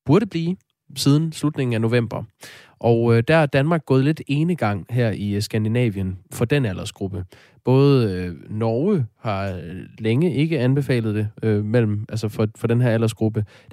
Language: Danish